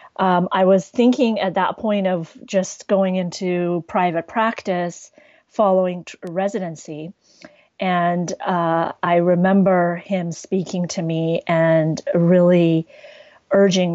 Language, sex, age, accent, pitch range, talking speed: English, female, 30-49, American, 175-210 Hz, 115 wpm